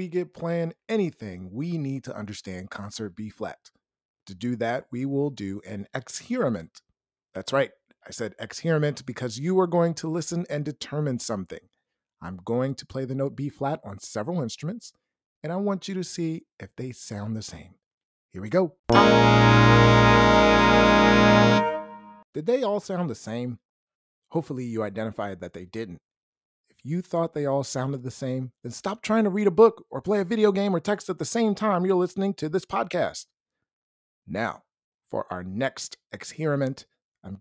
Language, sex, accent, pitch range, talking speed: English, male, American, 110-175 Hz, 165 wpm